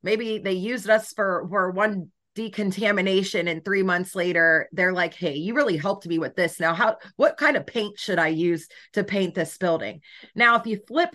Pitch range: 170-215 Hz